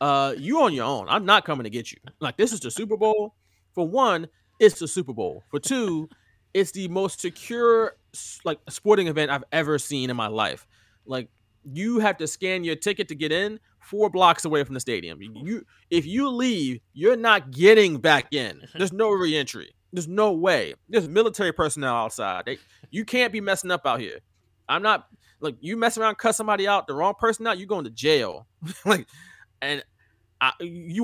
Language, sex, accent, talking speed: English, male, American, 195 wpm